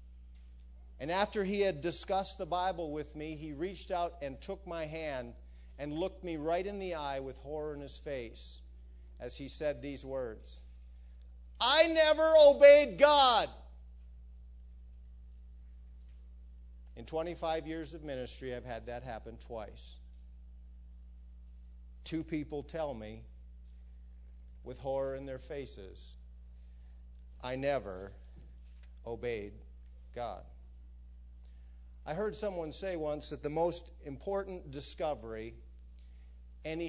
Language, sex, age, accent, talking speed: English, male, 50-69, American, 115 wpm